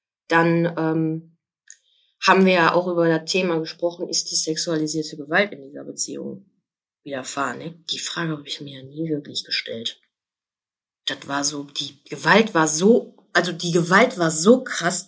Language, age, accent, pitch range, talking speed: German, 30-49, German, 160-205 Hz, 165 wpm